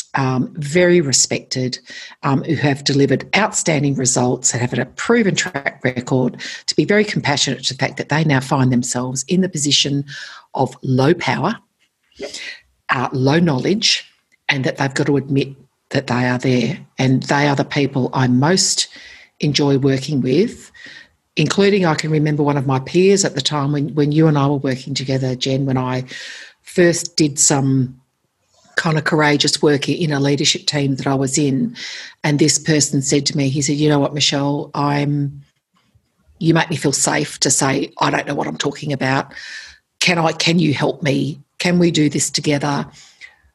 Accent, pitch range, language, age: Australian, 135-160 Hz, English, 60-79